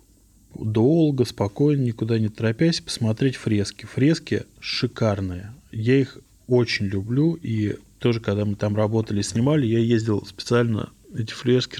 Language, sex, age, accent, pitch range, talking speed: Russian, male, 20-39, native, 105-125 Hz, 125 wpm